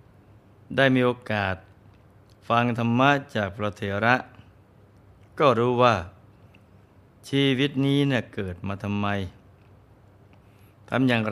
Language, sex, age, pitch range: Thai, male, 20-39, 100-115 Hz